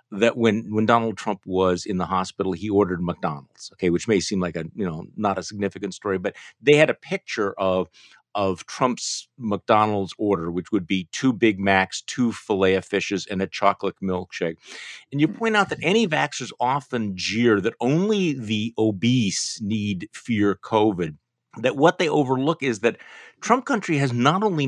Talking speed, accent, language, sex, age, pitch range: 180 wpm, American, English, male, 50-69, 100-155 Hz